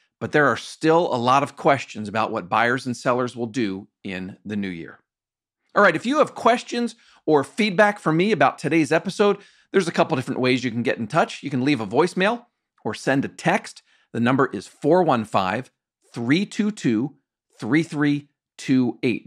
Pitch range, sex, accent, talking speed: 120-185 Hz, male, American, 180 wpm